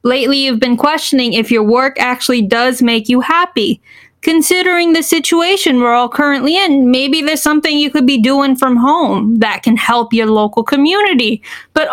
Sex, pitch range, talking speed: female, 240-305 Hz, 175 wpm